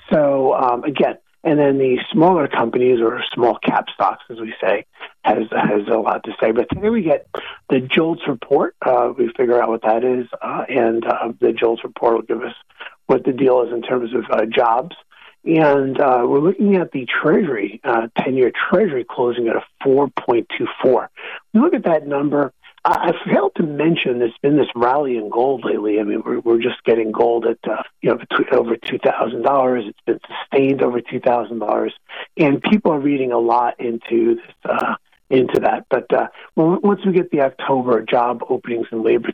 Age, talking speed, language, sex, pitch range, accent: 50-69, 195 wpm, English, male, 120-155 Hz, American